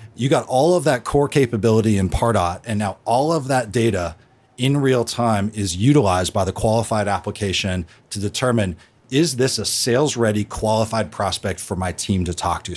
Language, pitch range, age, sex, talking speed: English, 100-125 Hz, 40-59, male, 180 wpm